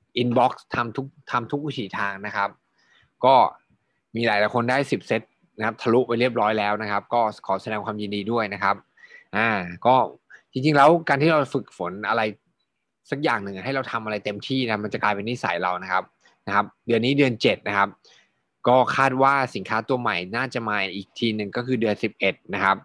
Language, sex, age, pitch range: Thai, male, 20-39, 100-125 Hz